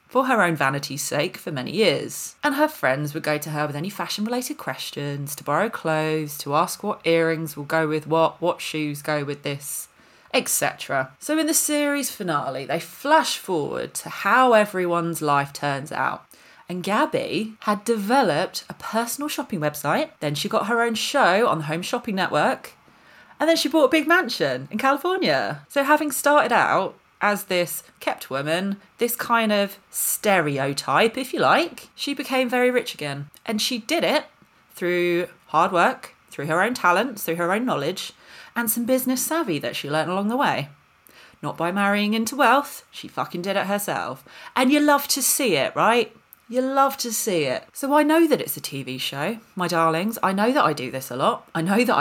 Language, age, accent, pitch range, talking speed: English, 30-49, British, 150-250 Hz, 190 wpm